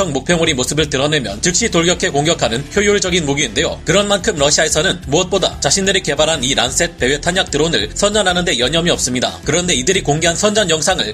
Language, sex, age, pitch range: Korean, male, 30-49, 145-185 Hz